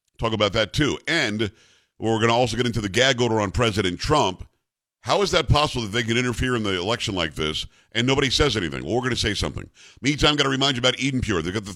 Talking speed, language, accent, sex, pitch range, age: 255 wpm, English, American, male, 105-135 Hz, 50-69